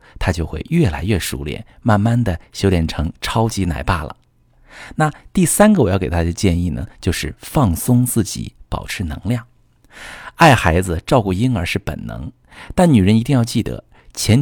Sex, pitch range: male, 85-125 Hz